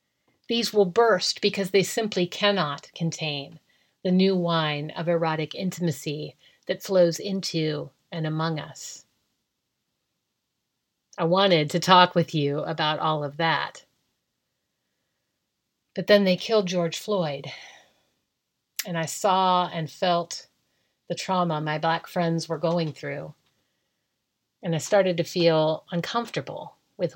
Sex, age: female, 40-59